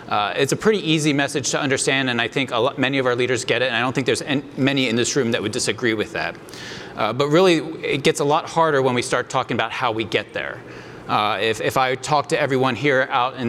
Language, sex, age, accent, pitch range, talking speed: English, male, 30-49, American, 120-145 Hz, 270 wpm